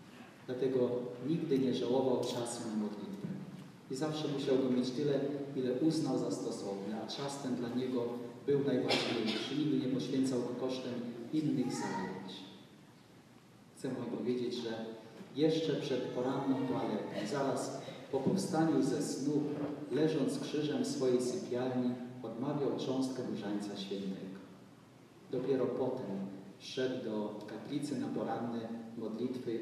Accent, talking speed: native, 120 wpm